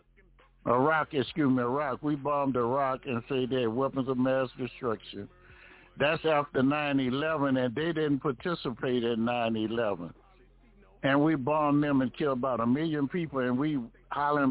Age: 60-79